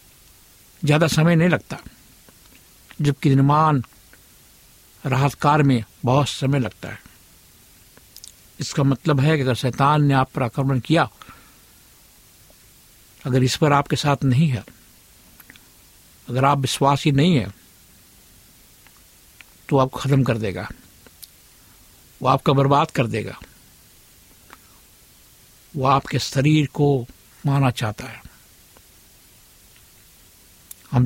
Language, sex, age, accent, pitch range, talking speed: Hindi, male, 60-79, native, 120-150 Hz, 105 wpm